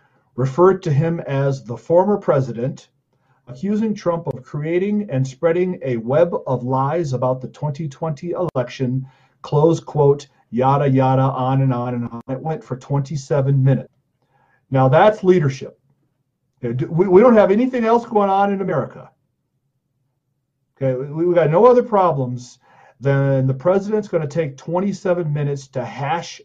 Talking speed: 145 wpm